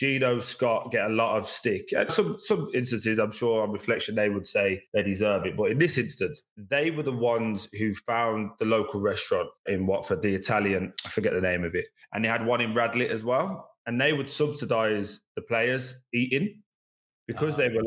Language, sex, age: English, male, 20-39